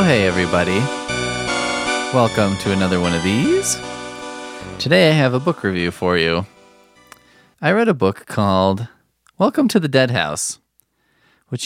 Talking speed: 140 wpm